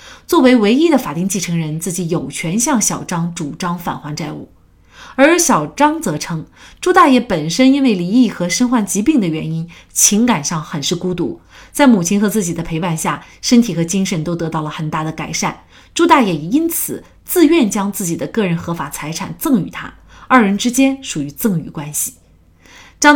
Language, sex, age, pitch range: Chinese, female, 30-49, 165-240 Hz